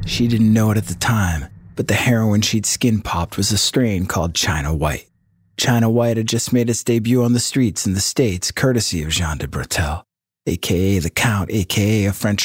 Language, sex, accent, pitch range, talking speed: English, male, American, 90-120 Hz, 200 wpm